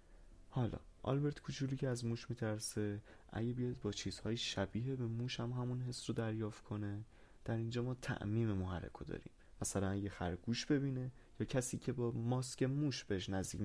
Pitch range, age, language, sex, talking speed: 100-125 Hz, 20-39, Persian, male, 165 wpm